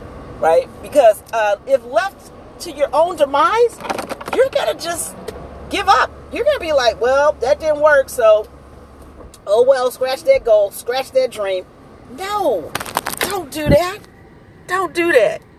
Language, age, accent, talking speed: English, 40-59, American, 145 wpm